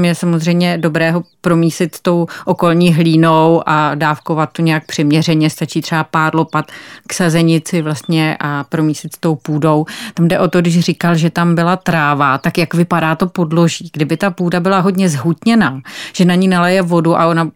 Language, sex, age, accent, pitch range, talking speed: Czech, female, 30-49, native, 155-175 Hz, 180 wpm